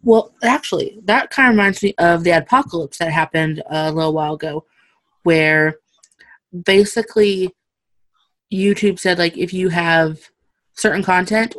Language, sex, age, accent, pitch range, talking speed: English, female, 20-39, American, 165-210 Hz, 135 wpm